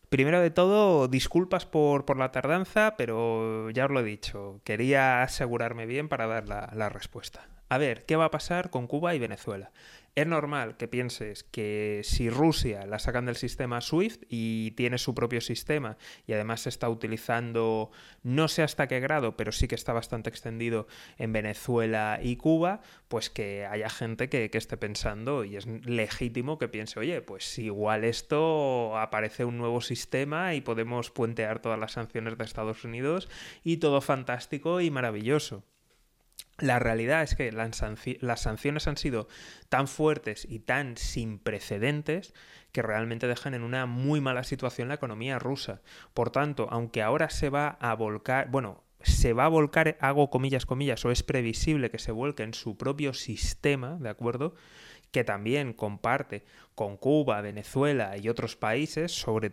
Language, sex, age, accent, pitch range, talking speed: Spanish, male, 20-39, Spanish, 110-145 Hz, 170 wpm